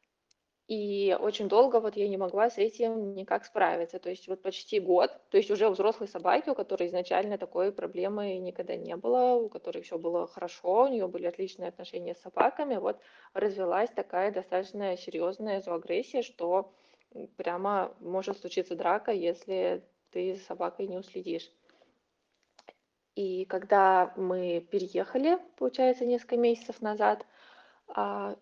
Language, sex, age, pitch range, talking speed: Russian, female, 20-39, 180-220 Hz, 140 wpm